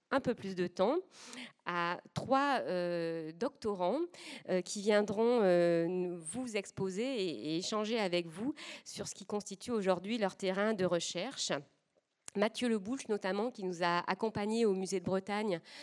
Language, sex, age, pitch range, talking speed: French, female, 40-59, 175-225 Hz, 150 wpm